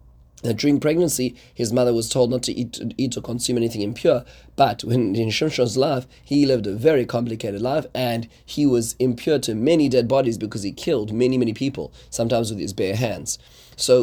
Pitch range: 115-140 Hz